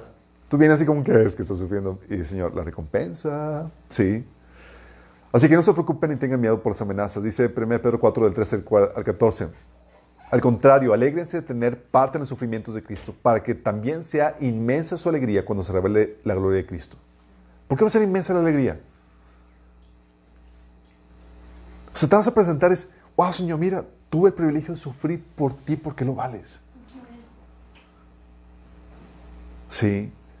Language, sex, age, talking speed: Spanish, male, 40-59, 170 wpm